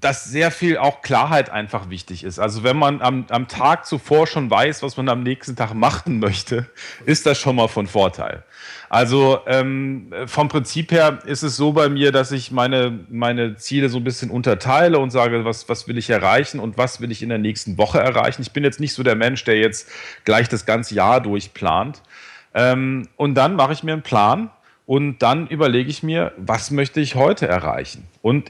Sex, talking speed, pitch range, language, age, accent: male, 205 wpm, 110-140 Hz, German, 40-59, German